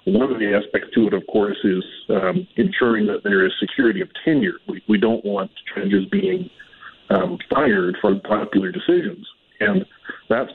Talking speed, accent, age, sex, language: 170 wpm, American, 40-59, male, English